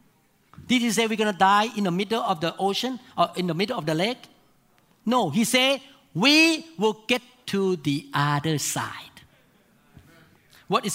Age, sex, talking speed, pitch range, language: 50-69, male, 175 wpm, 150-230 Hz, English